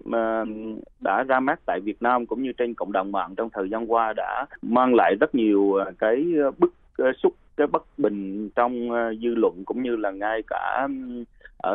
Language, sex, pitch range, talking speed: Vietnamese, male, 110-145 Hz, 185 wpm